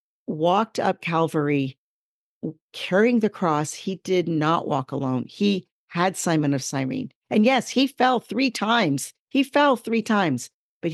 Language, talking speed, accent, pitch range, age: English, 150 wpm, American, 155-195 Hz, 50-69